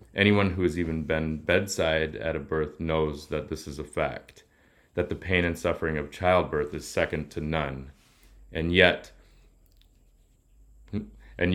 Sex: male